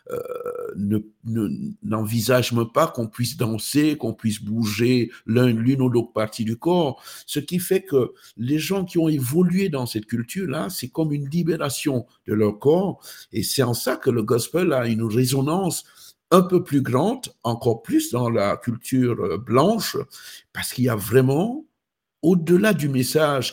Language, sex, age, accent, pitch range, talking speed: French, male, 60-79, French, 120-175 Hz, 170 wpm